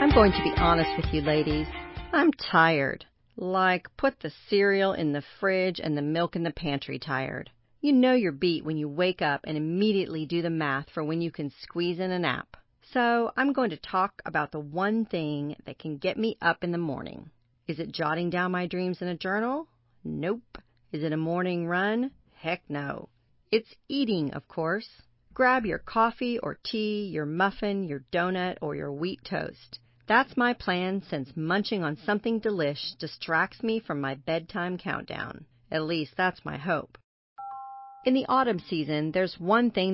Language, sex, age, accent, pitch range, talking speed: English, female, 40-59, American, 150-205 Hz, 185 wpm